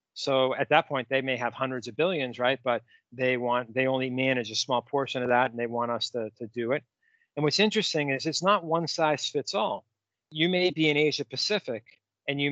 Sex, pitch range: male, 125-155 Hz